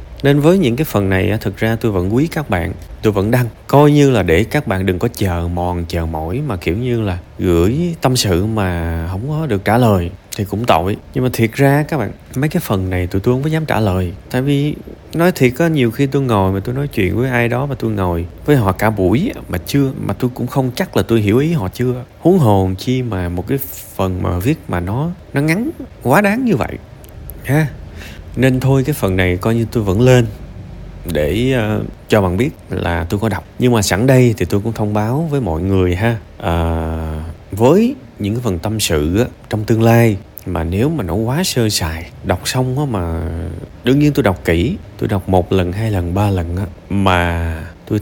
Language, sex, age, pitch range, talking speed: Vietnamese, male, 20-39, 90-130 Hz, 225 wpm